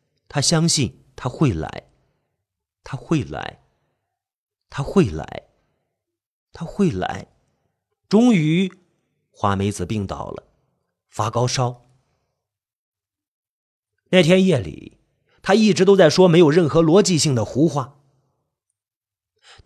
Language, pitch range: Chinese, 120-185 Hz